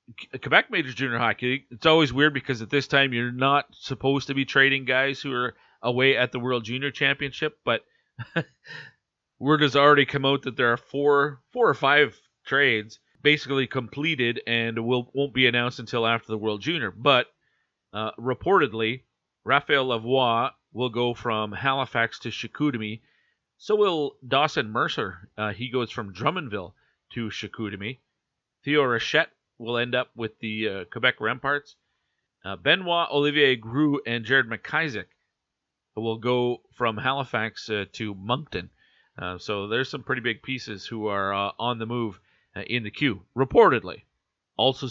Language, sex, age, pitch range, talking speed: English, male, 40-59, 110-135 Hz, 155 wpm